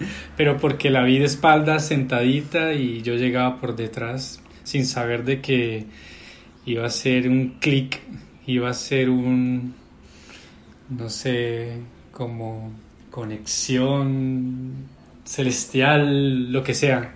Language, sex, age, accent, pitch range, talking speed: Spanish, male, 20-39, Colombian, 120-135 Hz, 115 wpm